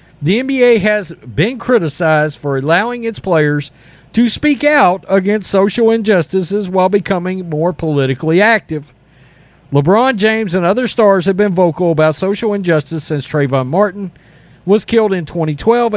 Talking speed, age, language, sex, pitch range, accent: 145 wpm, 40-59, English, male, 150-210 Hz, American